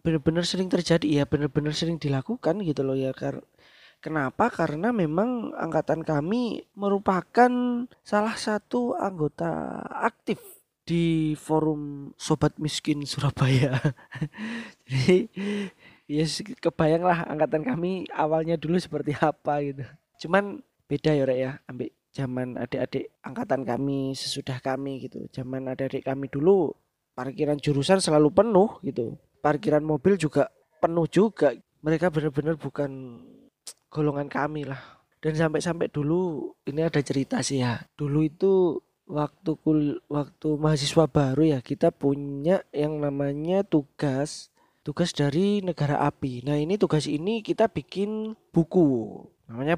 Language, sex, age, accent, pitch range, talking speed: Indonesian, male, 20-39, native, 140-175 Hz, 120 wpm